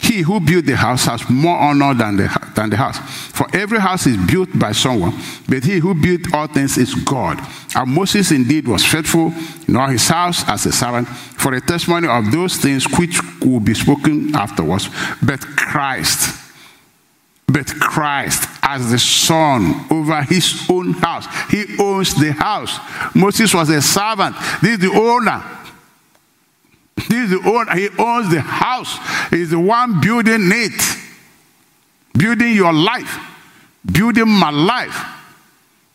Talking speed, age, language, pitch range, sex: 155 wpm, 60-79, English, 150-210 Hz, male